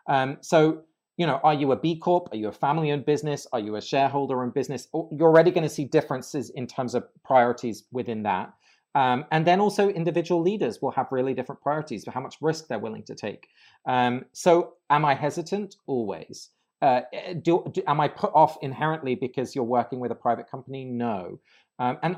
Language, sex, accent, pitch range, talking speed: English, male, British, 130-175 Hz, 200 wpm